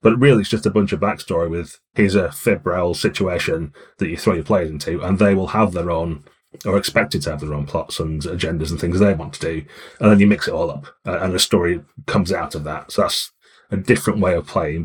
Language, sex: English, male